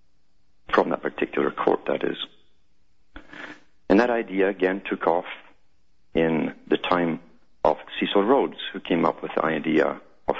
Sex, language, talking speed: male, English, 145 wpm